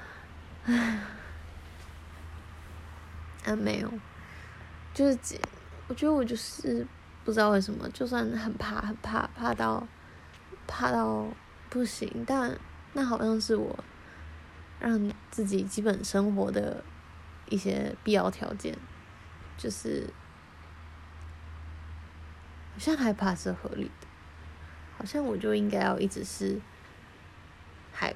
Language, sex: Chinese, female